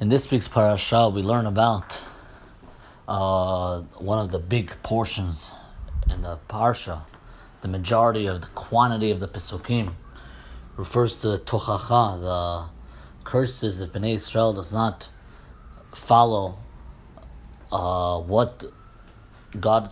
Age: 30-49